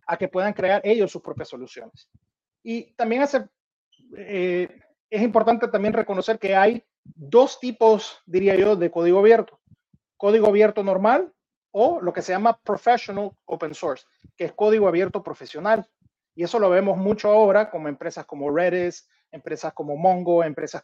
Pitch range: 175-215 Hz